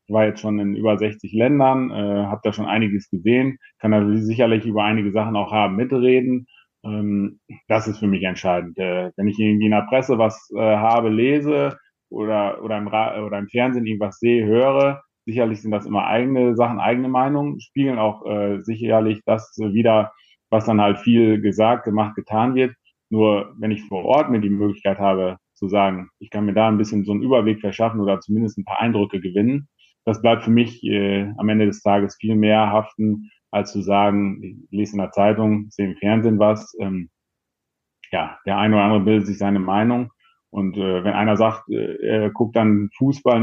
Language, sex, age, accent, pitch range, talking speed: German, male, 30-49, German, 100-120 Hz, 200 wpm